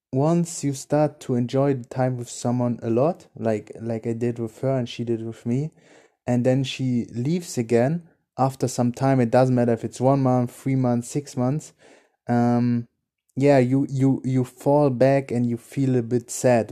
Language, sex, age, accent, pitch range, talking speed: English, male, 20-39, German, 115-130 Hz, 195 wpm